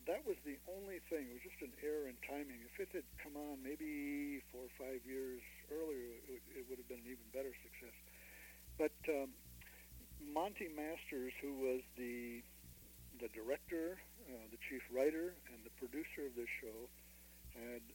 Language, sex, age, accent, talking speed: English, male, 60-79, American, 175 wpm